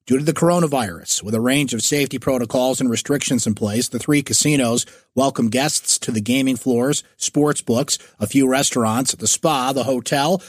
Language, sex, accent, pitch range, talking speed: English, male, American, 120-155 Hz, 185 wpm